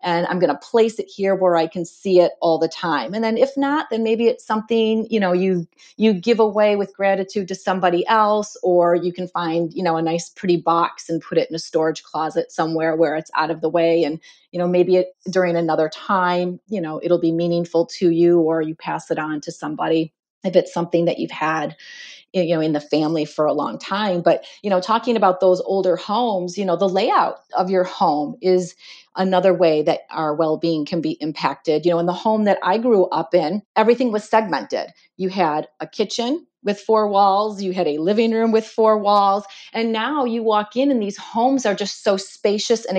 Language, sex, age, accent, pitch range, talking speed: English, female, 30-49, American, 165-215 Hz, 220 wpm